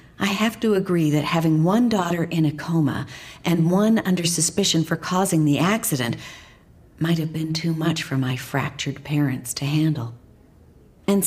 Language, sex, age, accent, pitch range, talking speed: English, female, 50-69, American, 140-185 Hz, 165 wpm